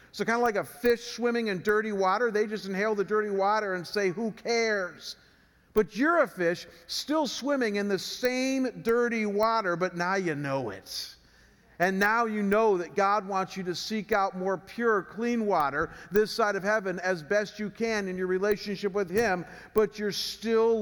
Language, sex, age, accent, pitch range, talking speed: English, male, 50-69, American, 190-230 Hz, 195 wpm